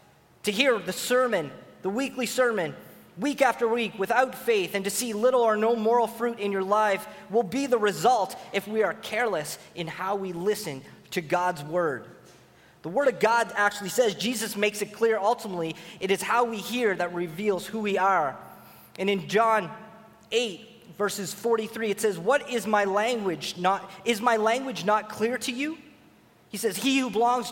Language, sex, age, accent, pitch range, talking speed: English, male, 30-49, American, 195-235 Hz, 175 wpm